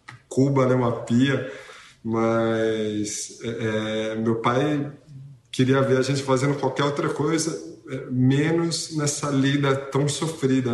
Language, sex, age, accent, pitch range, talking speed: Portuguese, male, 20-39, Brazilian, 120-135 Hz, 125 wpm